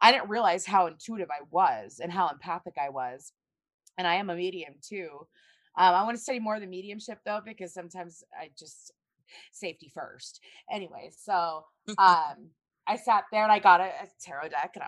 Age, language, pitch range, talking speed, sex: 20-39, English, 160-200 Hz, 195 wpm, female